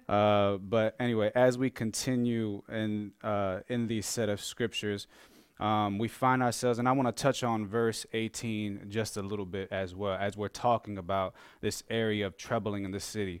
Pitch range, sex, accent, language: 105-130 Hz, male, American, English